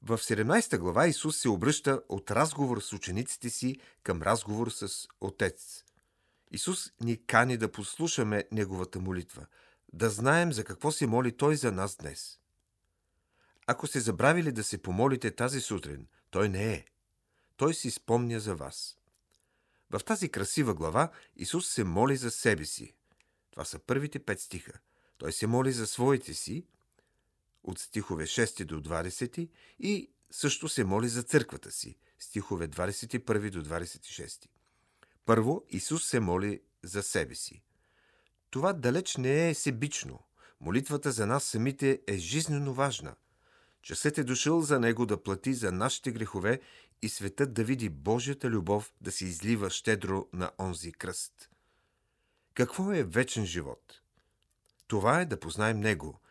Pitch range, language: 100-140 Hz, Bulgarian